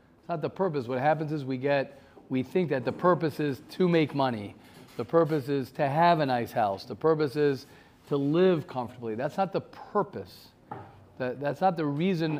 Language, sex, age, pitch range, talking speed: English, male, 40-59, 130-160 Hz, 195 wpm